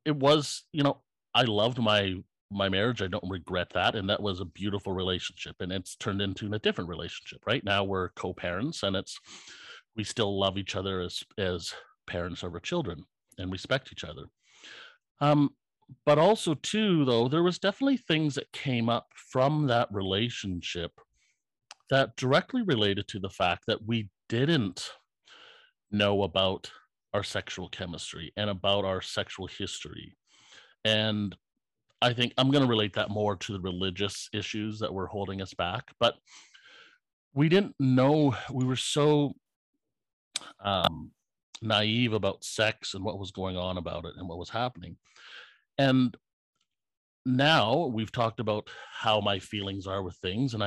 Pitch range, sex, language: 95-130 Hz, male, English